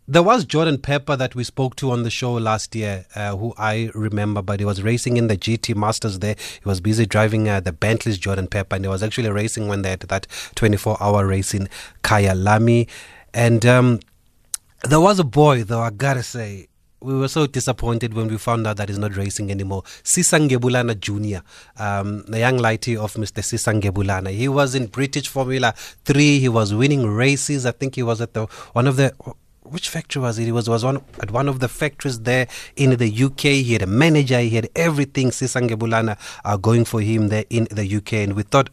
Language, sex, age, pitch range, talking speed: English, male, 30-49, 105-130 Hz, 220 wpm